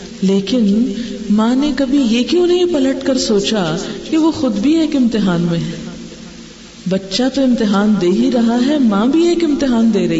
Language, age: Urdu, 50-69